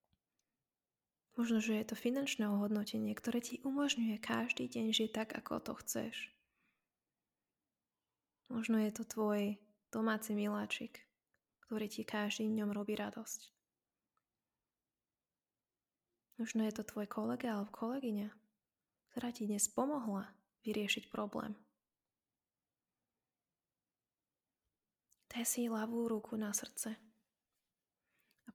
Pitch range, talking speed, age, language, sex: 210-230 Hz, 100 wpm, 20-39, Slovak, female